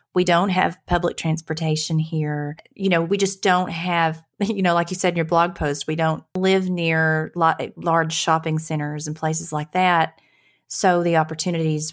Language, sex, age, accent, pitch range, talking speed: English, female, 30-49, American, 150-175 Hz, 175 wpm